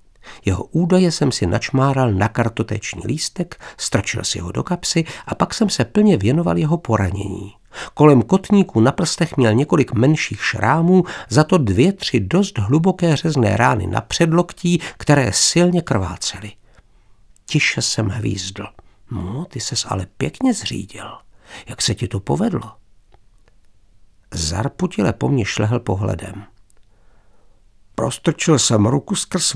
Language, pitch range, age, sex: Czech, 100-150 Hz, 60-79, male